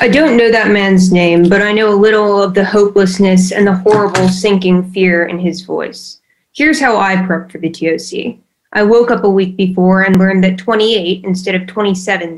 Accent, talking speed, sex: American, 205 wpm, female